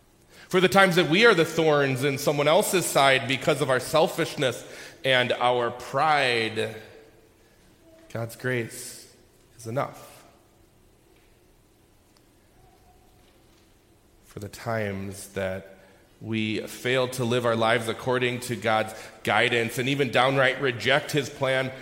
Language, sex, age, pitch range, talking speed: English, male, 30-49, 115-150 Hz, 120 wpm